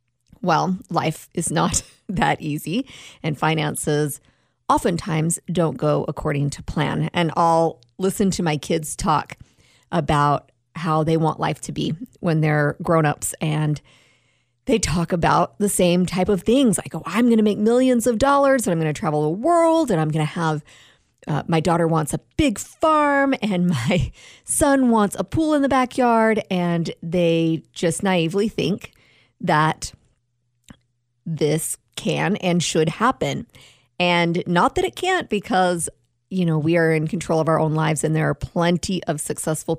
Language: English